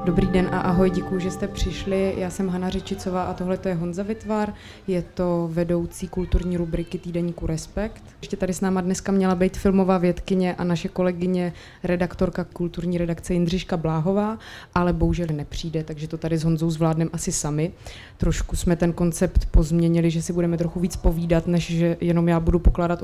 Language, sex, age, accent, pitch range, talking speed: Czech, female, 20-39, native, 175-205 Hz, 180 wpm